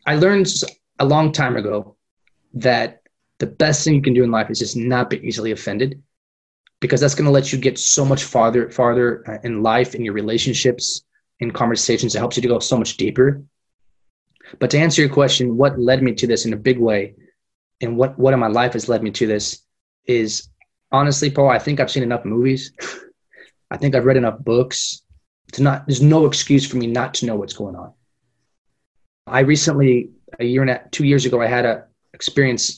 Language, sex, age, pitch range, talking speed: English, male, 20-39, 115-140 Hz, 205 wpm